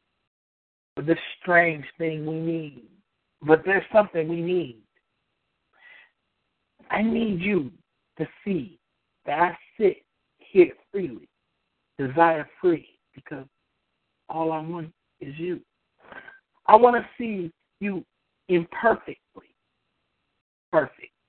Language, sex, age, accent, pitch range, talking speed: English, male, 50-69, American, 160-220 Hz, 100 wpm